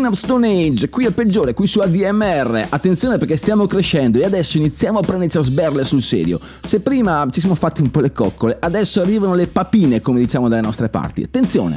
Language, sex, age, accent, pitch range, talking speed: Italian, male, 30-49, native, 120-190 Hz, 210 wpm